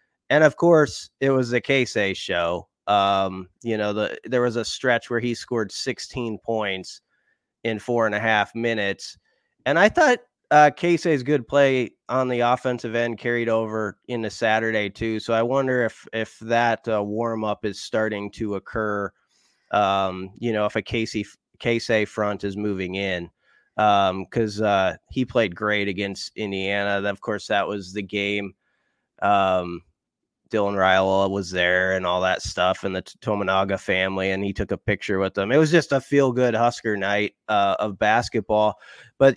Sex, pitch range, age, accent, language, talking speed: male, 100-125 Hz, 30-49, American, English, 170 wpm